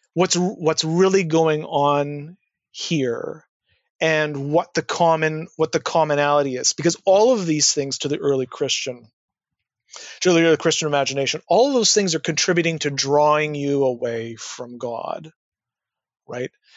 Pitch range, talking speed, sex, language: 140-170 Hz, 145 wpm, male, English